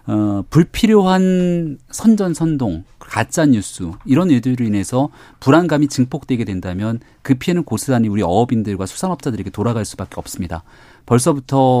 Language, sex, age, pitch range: Korean, male, 40-59, 110-155 Hz